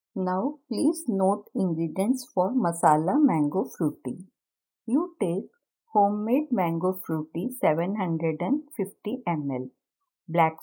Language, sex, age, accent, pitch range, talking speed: Hindi, female, 50-69, native, 160-235 Hz, 90 wpm